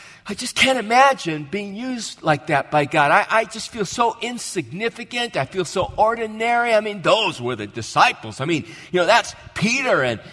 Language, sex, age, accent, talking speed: English, male, 50-69, American, 190 wpm